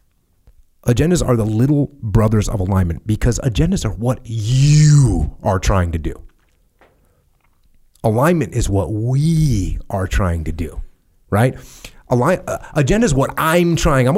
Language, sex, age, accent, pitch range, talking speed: English, male, 30-49, American, 95-135 Hz, 140 wpm